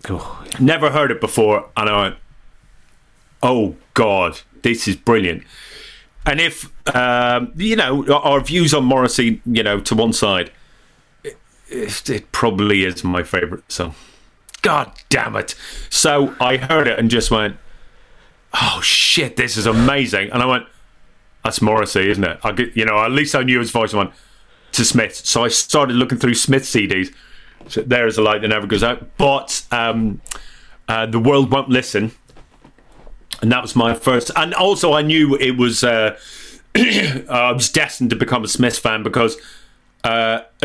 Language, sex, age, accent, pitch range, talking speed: English, male, 30-49, British, 110-135 Hz, 170 wpm